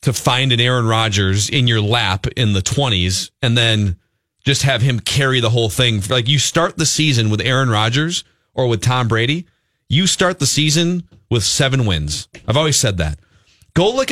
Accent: American